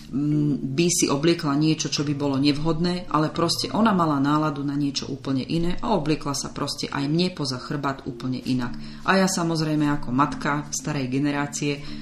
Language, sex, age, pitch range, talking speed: Slovak, female, 30-49, 140-165 Hz, 165 wpm